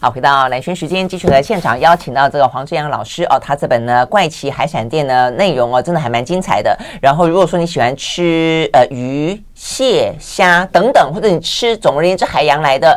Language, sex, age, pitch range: Chinese, female, 30-49, 140-205 Hz